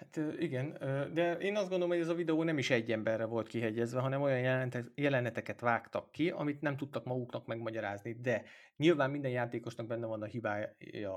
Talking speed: 185 wpm